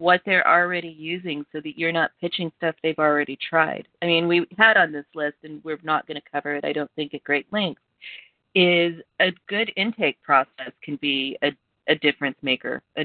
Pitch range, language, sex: 145-180 Hz, English, female